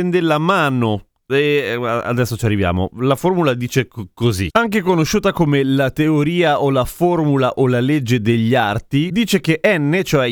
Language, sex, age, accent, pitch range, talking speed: Italian, male, 30-49, native, 120-175 Hz, 165 wpm